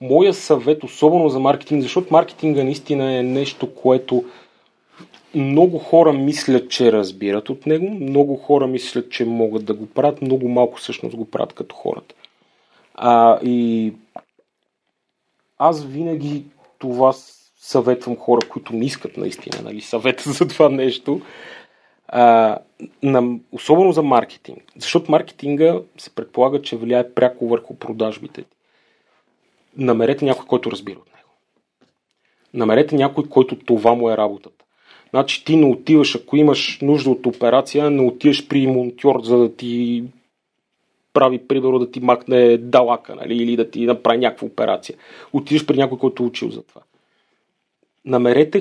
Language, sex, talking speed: Bulgarian, male, 140 wpm